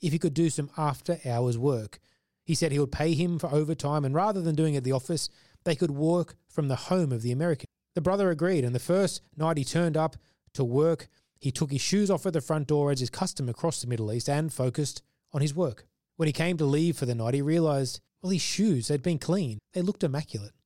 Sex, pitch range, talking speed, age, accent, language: male, 130-175 Hz, 245 wpm, 20-39, Australian, English